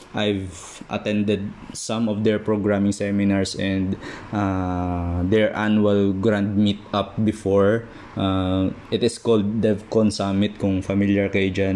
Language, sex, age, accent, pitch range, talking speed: Filipino, male, 20-39, native, 95-110 Hz, 115 wpm